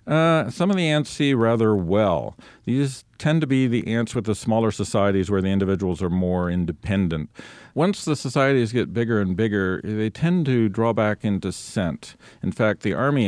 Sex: male